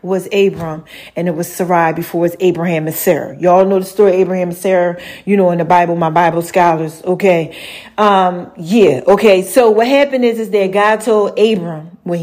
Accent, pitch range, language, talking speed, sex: American, 180-245 Hz, English, 200 wpm, female